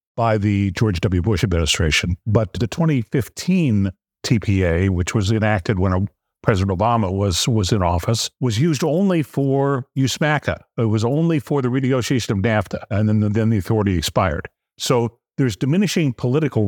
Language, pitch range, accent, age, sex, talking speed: English, 100-130 Hz, American, 50-69, male, 155 wpm